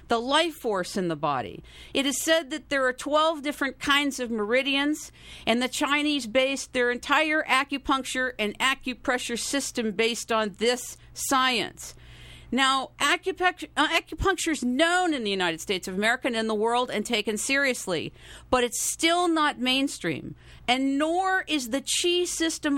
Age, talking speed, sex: 50-69, 155 wpm, female